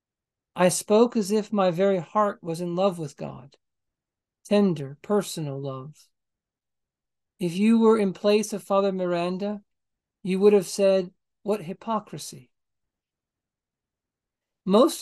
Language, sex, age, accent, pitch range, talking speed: English, male, 50-69, American, 165-205 Hz, 120 wpm